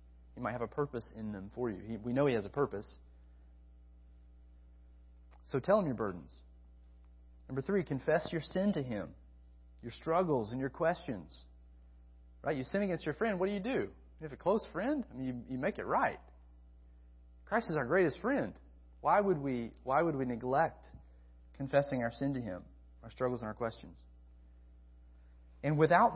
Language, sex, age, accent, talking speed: English, male, 30-49, American, 180 wpm